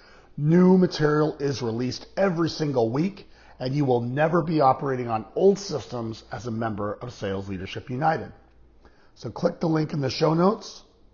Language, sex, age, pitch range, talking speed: English, male, 40-59, 115-155 Hz, 165 wpm